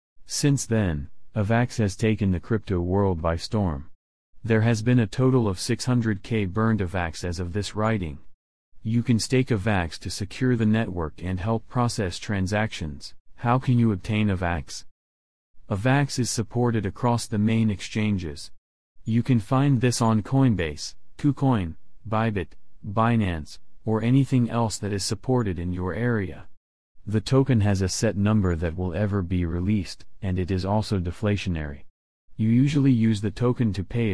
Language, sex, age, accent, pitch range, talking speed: English, male, 40-59, American, 90-115 Hz, 155 wpm